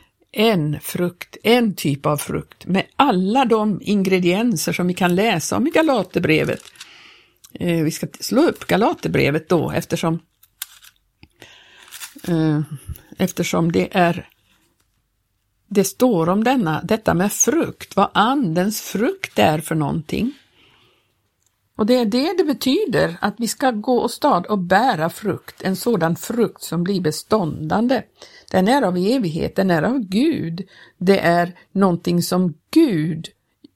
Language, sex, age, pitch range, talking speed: Swedish, female, 60-79, 165-215 Hz, 130 wpm